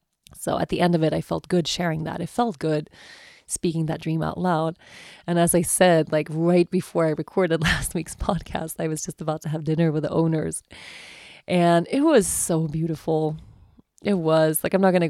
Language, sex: English, female